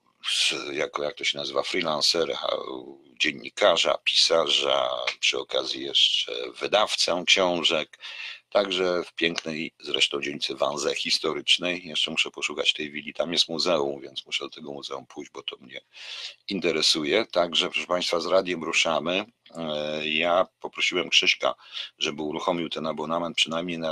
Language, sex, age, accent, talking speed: Polish, male, 50-69, native, 135 wpm